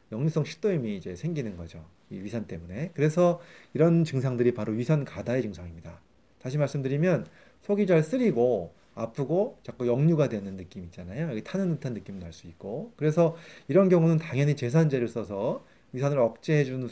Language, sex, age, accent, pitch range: Korean, male, 30-49, native, 115-165 Hz